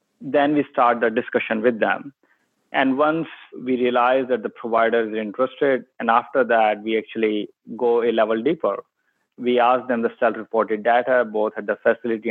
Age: 20-39